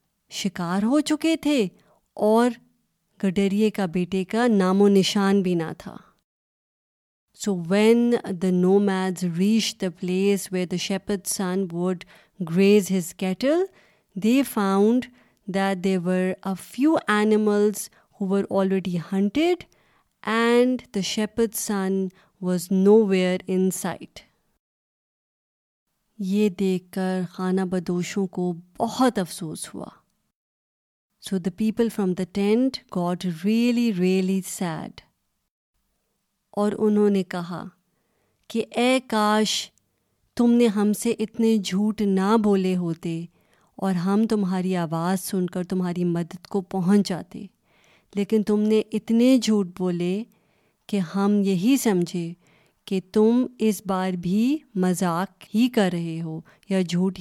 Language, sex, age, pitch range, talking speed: Urdu, female, 30-49, 185-215 Hz, 125 wpm